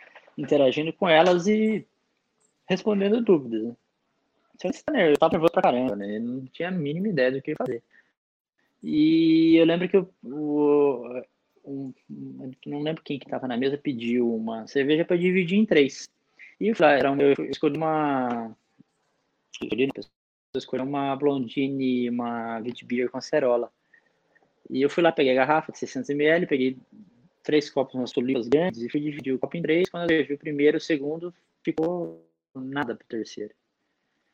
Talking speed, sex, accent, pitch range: 170 wpm, male, Brazilian, 130-170 Hz